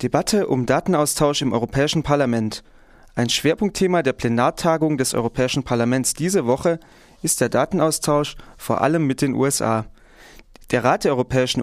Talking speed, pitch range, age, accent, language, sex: 140 wpm, 125-160 Hz, 30-49, German, German, male